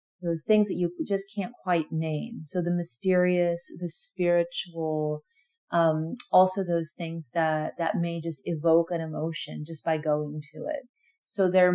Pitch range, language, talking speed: 165-200 Hz, English, 160 wpm